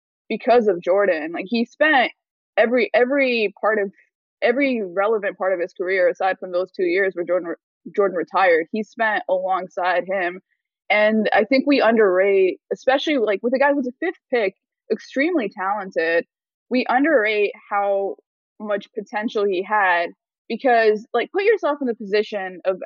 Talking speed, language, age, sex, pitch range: 160 wpm, English, 20-39, female, 185-255 Hz